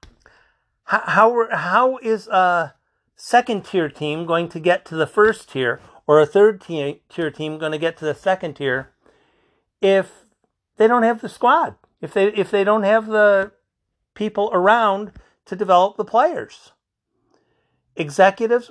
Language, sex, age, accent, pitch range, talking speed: English, male, 50-69, American, 170-220 Hz, 150 wpm